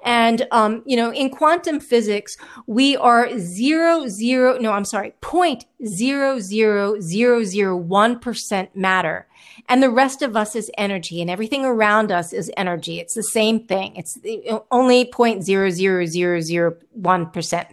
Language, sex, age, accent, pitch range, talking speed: English, female, 40-59, American, 190-260 Hz, 165 wpm